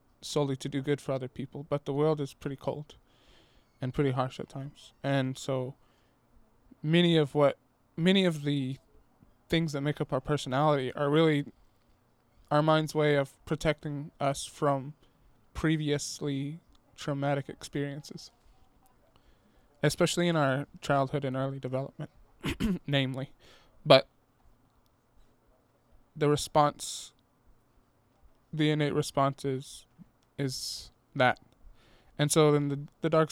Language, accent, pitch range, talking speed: English, American, 135-150 Hz, 120 wpm